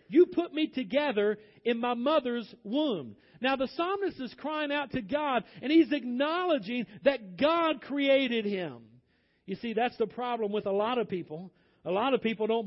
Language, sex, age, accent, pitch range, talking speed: English, male, 50-69, American, 210-280 Hz, 180 wpm